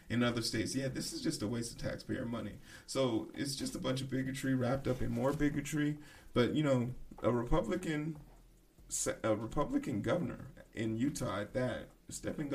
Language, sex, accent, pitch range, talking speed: English, male, American, 110-140 Hz, 175 wpm